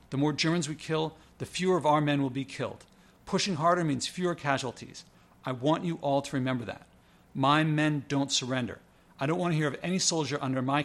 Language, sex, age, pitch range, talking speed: English, male, 50-69, 135-165 Hz, 215 wpm